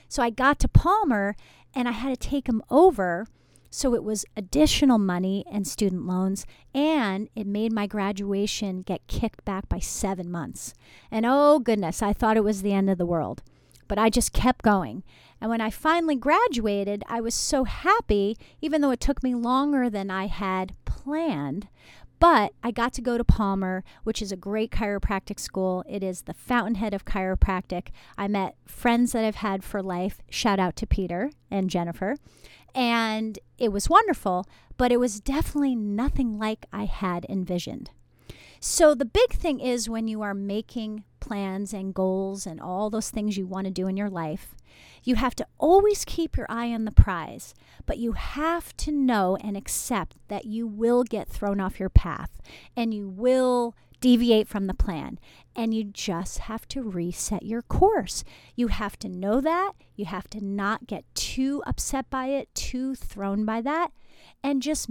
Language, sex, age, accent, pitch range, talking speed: English, female, 40-59, American, 195-255 Hz, 180 wpm